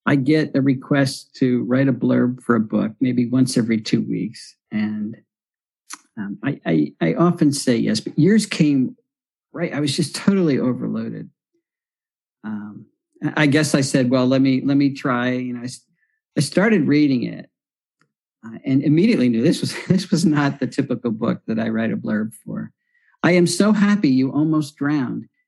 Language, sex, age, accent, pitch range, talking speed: English, male, 50-69, American, 125-175 Hz, 175 wpm